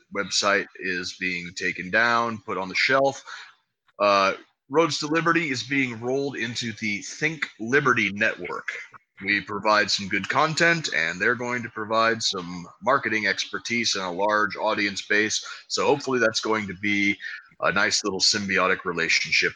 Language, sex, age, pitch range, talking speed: English, male, 30-49, 100-135 Hz, 155 wpm